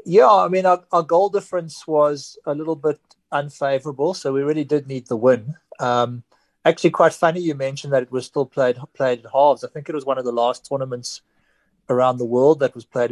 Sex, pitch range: male, 125-150 Hz